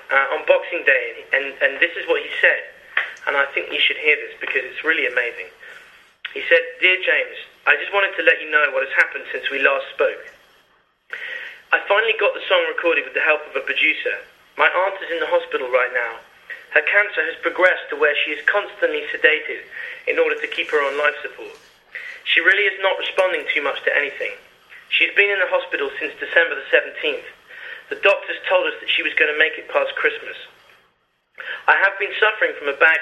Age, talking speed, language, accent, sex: 30-49, 210 wpm, English, British, male